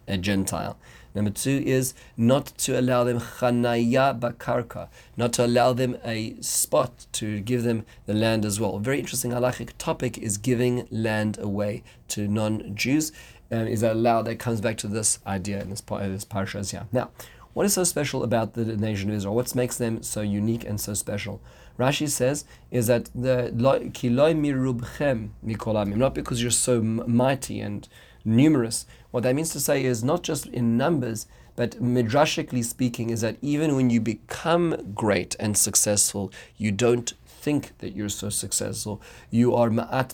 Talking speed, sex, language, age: 175 wpm, male, English, 40-59